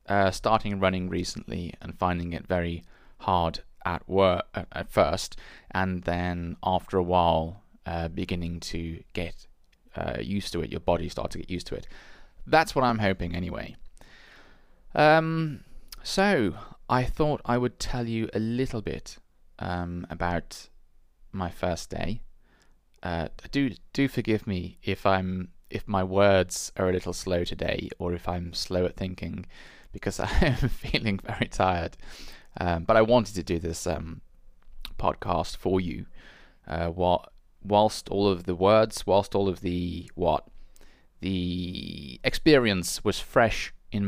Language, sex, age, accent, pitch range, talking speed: English, male, 20-39, British, 85-105 Hz, 150 wpm